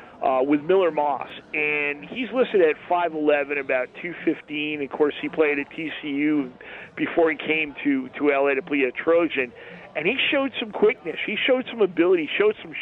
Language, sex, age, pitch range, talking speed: English, male, 40-59, 150-190 Hz, 185 wpm